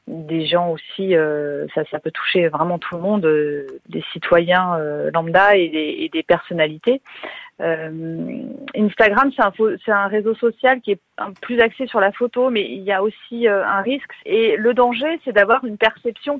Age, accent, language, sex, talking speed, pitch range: 30-49, French, French, female, 190 wpm, 180-235 Hz